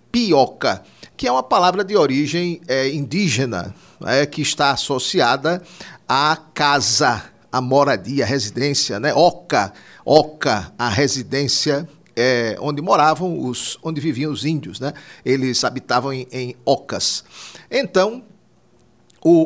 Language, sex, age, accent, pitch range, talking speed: Portuguese, male, 50-69, Brazilian, 125-175 Hz, 125 wpm